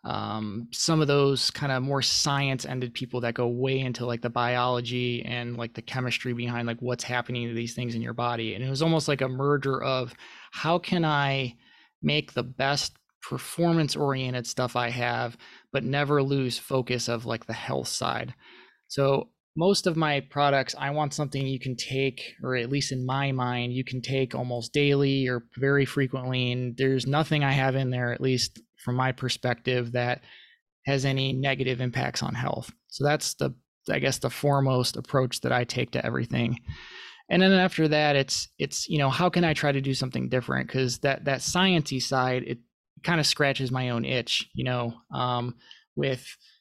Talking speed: 190 wpm